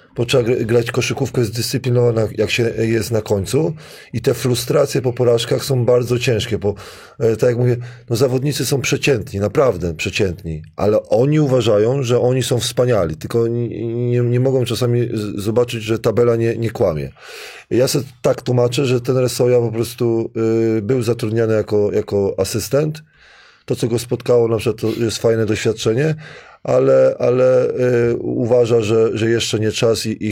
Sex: male